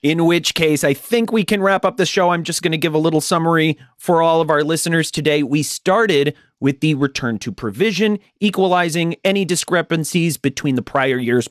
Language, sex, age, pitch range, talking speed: English, male, 30-49, 120-165 Hz, 205 wpm